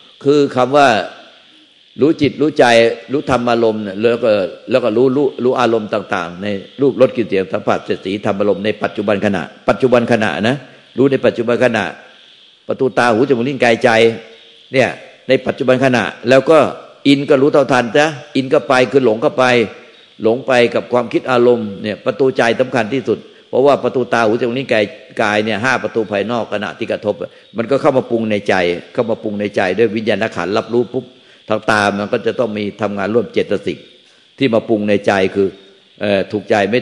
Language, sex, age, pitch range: Thai, male, 60-79, 105-130 Hz